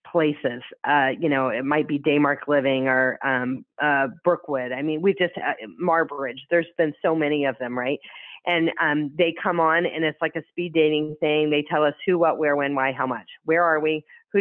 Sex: female